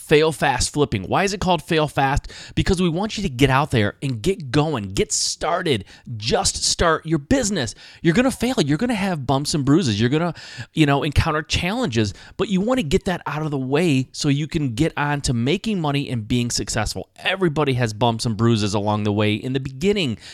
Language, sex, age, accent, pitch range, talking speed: English, male, 30-49, American, 120-170 Hz, 210 wpm